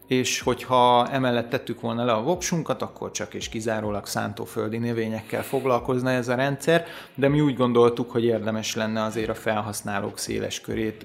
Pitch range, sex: 110-125 Hz, male